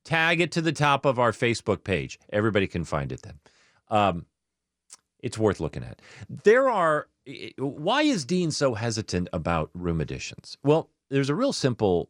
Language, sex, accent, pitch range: English, male, American, 80-120 Hz